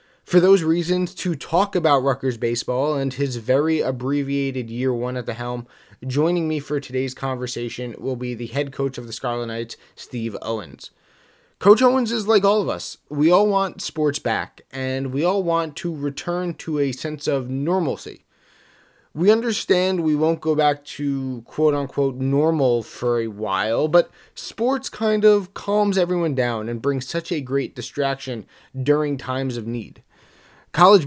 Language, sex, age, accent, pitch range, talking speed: English, male, 20-39, American, 130-170 Hz, 165 wpm